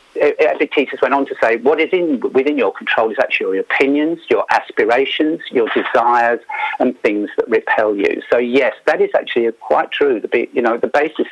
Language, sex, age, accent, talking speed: English, male, 50-69, British, 195 wpm